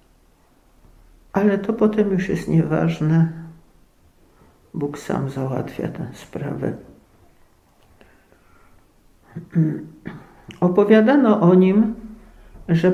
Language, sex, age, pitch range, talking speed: Polish, male, 50-69, 155-195 Hz, 70 wpm